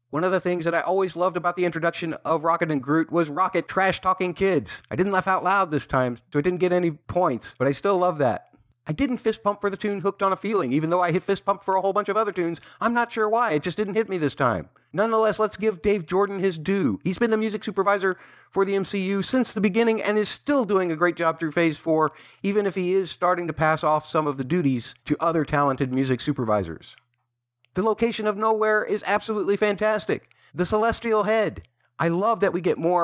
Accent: American